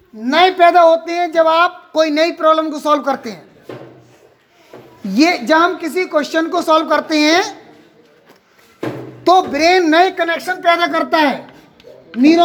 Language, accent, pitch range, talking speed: Hindi, native, 300-350 Hz, 125 wpm